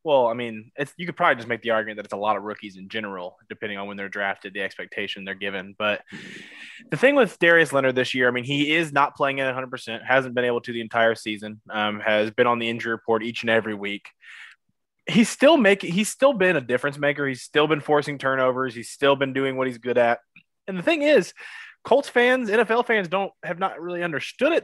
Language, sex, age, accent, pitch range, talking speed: English, male, 20-39, American, 120-150 Hz, 240 wpm